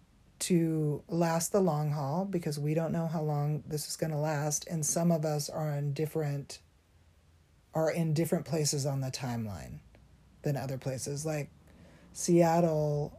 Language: English